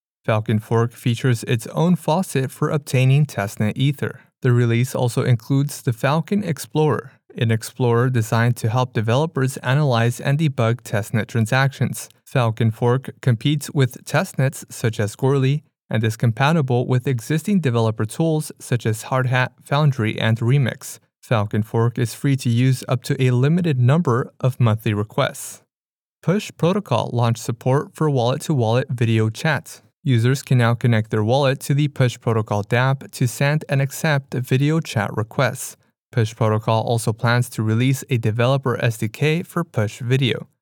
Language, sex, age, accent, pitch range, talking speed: English, male, 30-49, American, 115-140 Hz, 150 wpm